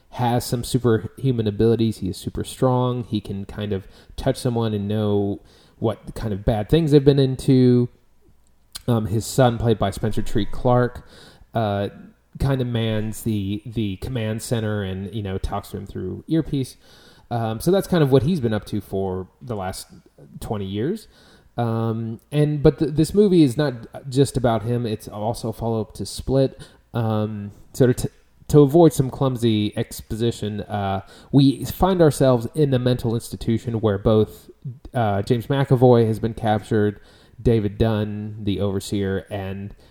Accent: American